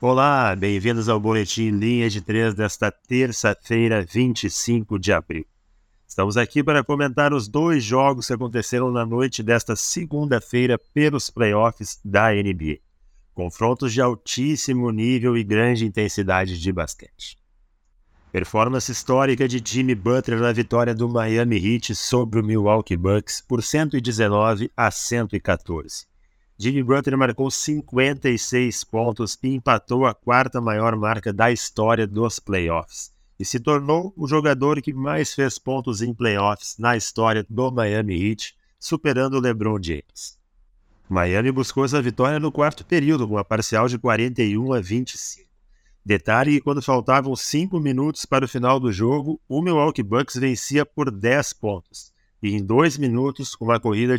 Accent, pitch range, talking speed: Brazilian, 105-130 Hz, 145 wpm